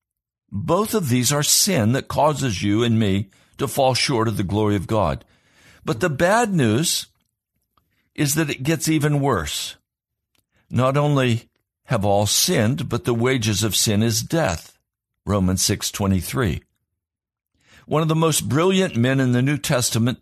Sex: male